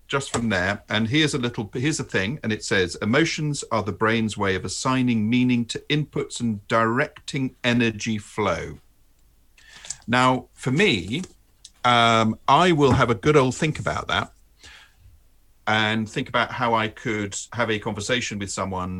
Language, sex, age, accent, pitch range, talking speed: English, male, 50-69, British, 95-130 Hz, 160 wpm